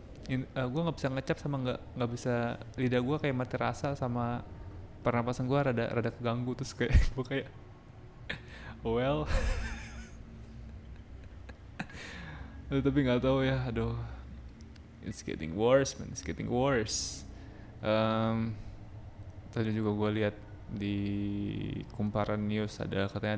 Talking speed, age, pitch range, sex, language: 120 wpm, 20-39, 100-120 Hz, male, Indonesian